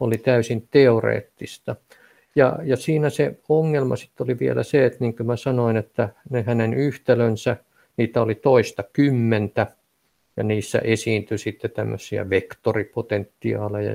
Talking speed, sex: 125 wpm, male